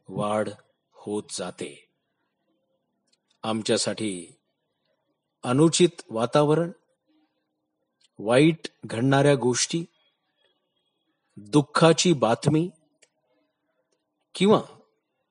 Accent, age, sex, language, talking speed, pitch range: native, 50-69, male, Marathi, 45 wpm, 115-165 Hz